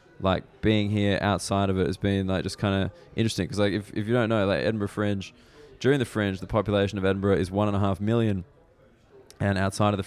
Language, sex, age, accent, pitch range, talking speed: English, male, 20-39, Australian, 95-105 Hz, 240 wpm